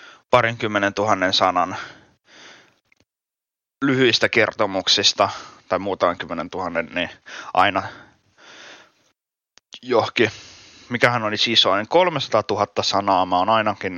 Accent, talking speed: native, 90 wpm